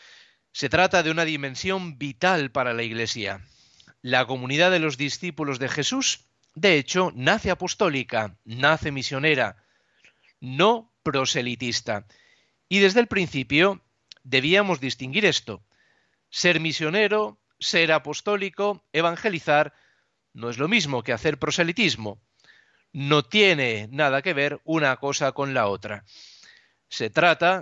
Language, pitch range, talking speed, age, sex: Spanish, 125-175 Hz, 120 wpm, 40-59, male